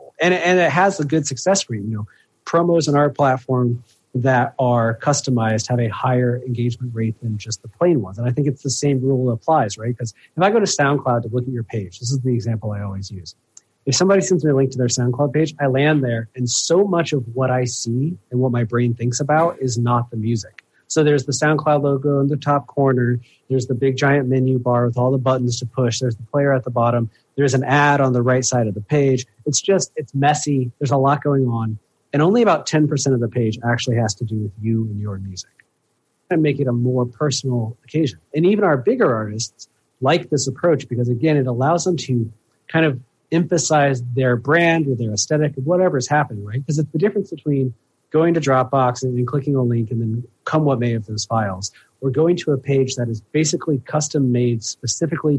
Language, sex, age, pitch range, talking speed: English, male, 30-49, 120-145 Hz, 230 wpm